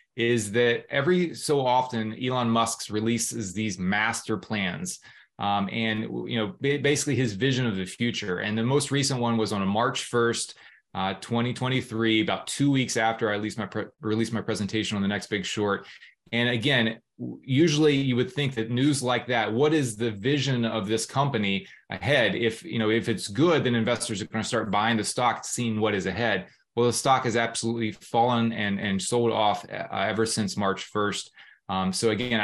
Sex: male